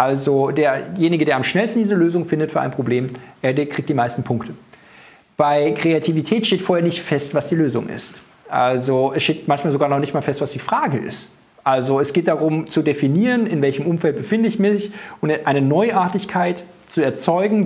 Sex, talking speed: male, 190 wpm